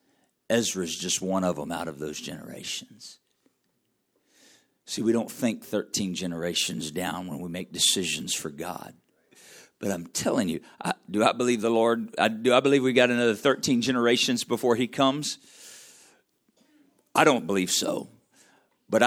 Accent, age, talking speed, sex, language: American, 50-69, 155 wpm, male, English